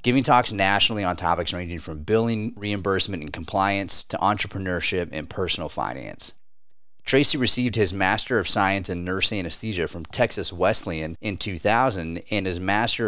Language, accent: English, American